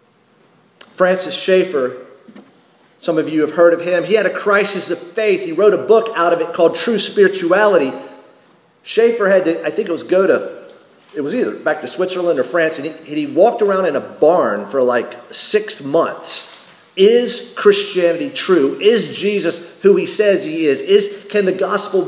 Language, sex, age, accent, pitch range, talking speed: English, male, 40-59, American, 165-225 Hz, 185 wpm